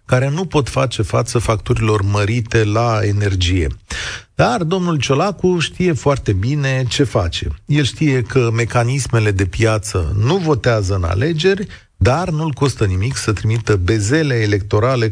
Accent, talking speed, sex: native, 140 wpm, male